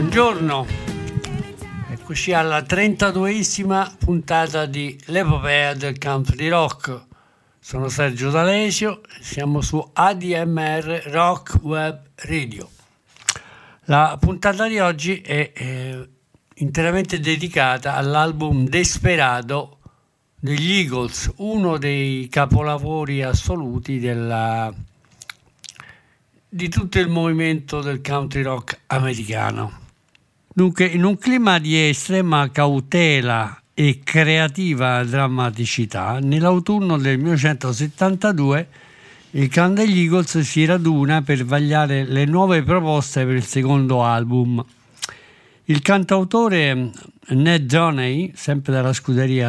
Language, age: Italian, 60-79